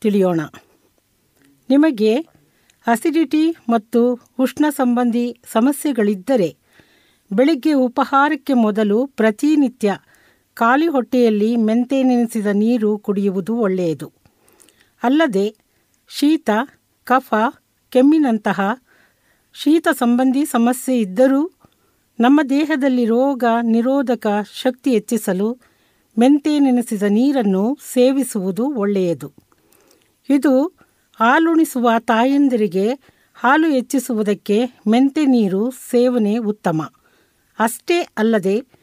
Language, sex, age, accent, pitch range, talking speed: Kannada, female, 50-69, native, 210-275 Hz, 70 wpm